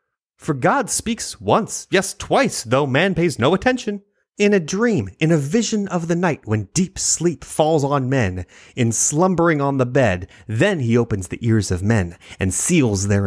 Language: English